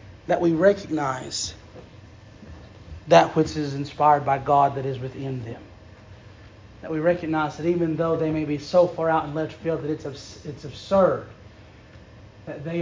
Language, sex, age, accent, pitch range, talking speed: English, male, 30-49, American, 105-160 Hz, 165 wpm